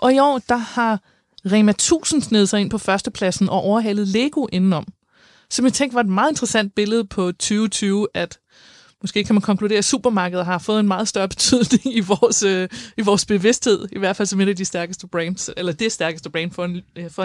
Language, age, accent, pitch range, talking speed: Danish, 30-49, native, 180-240 Hz, 210 wpm